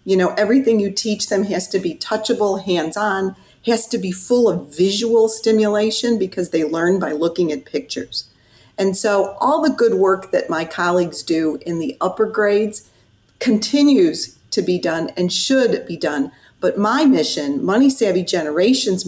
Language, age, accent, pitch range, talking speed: English, 40-59, American, 175-240 Hz, 170 wpm